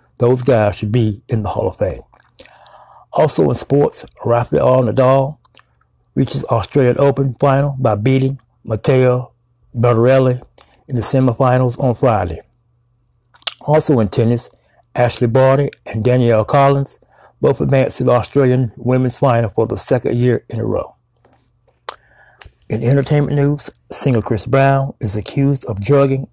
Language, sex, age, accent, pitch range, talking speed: English, male, 60-79, American, 115-135 Hz, 135 wpm